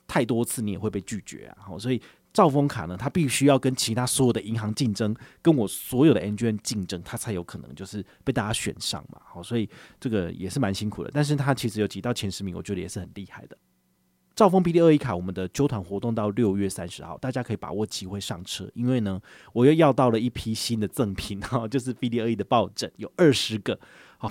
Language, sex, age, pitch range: Chinese, male, 30-49, 100-130 Hz